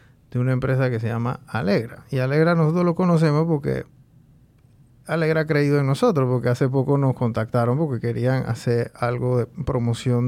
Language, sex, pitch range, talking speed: Spanish, male, 125-150 Hz, 170 wpm